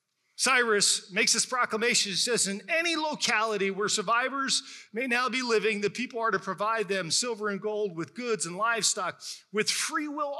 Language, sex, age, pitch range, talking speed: English, male, 40-59, 195-245 Hz, 180 wpm